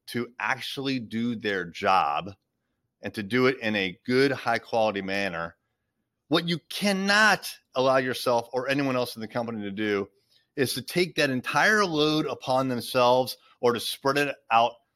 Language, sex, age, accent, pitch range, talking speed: English, male, 30-49, American, 110-160 Hz, 160 wpm